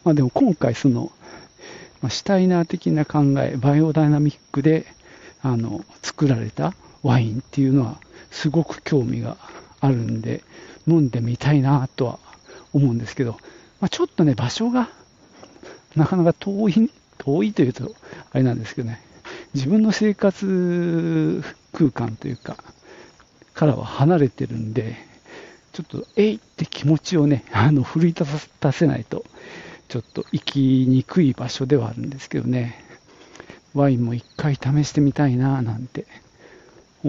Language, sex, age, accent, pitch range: Japanese, male, 50-69, native, 125-165 Hz